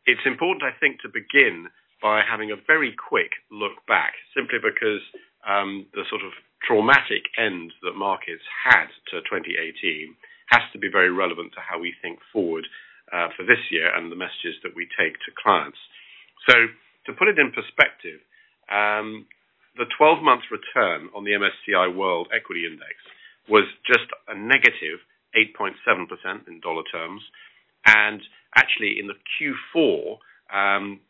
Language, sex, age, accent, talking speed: English, male, 50-69, British, 150 wpm